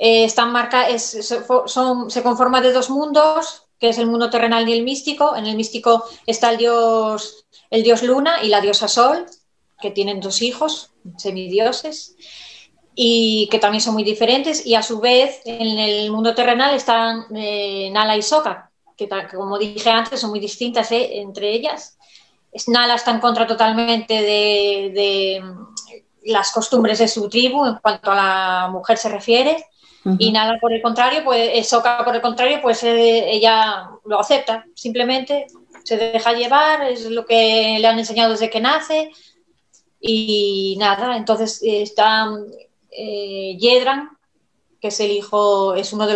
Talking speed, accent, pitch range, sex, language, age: 165 wpm, Spanish, 215-250 Hz, female, Spanish, 20-39